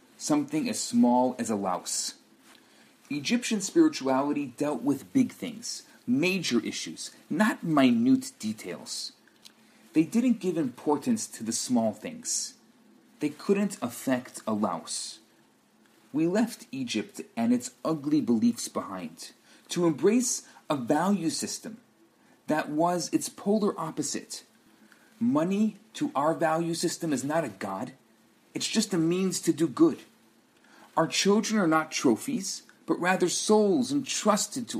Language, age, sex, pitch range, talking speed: English, 40-59, male, 155-245 Hz, 130 wpm